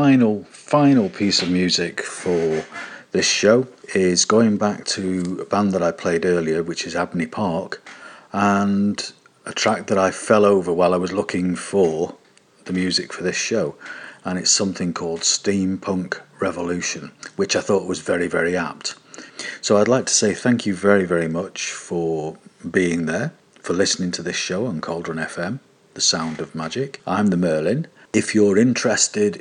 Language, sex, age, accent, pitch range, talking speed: English, male, 40-59, British, 90-120 Hz, 170 wpm